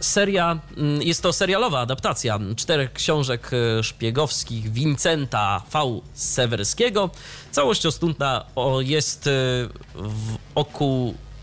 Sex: male